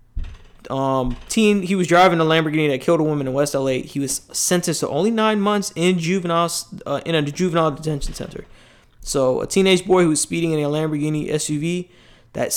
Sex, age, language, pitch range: male, 20-39, English, 135-170 Hz